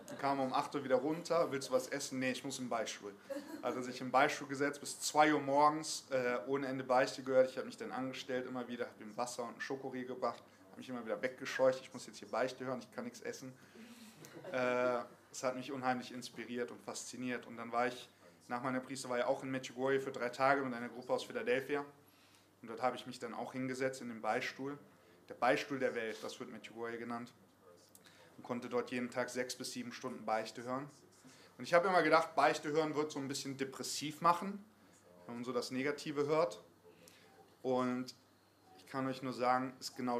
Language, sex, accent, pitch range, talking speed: English, male, German, 120-140 Hz, 210 wpm